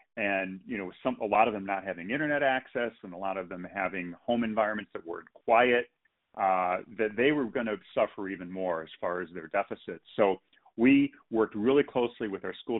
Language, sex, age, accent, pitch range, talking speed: English, male, 40-59, American, 95-125 Hz, 210 wpm